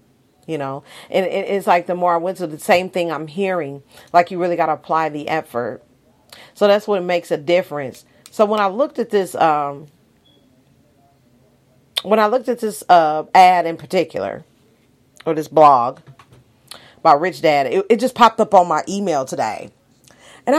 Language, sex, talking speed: English, female, 180 wpm